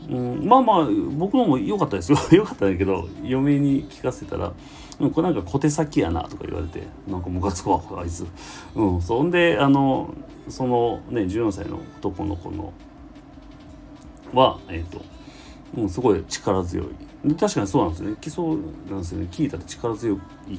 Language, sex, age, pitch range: Japanese, male, 40-59, 90-140 Hz